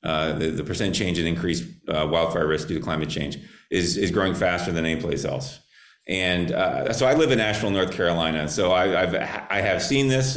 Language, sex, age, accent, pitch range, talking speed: English, male, 30-49, American, 80-95 Hz, 220 wpm